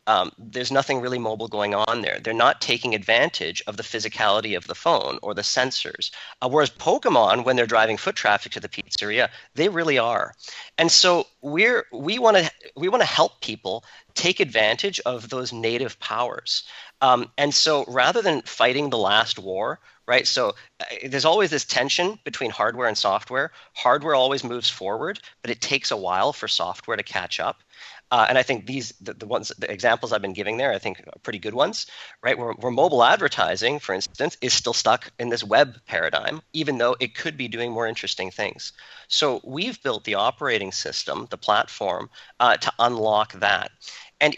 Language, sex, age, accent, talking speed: English, male, 40-59, American, 190 wpm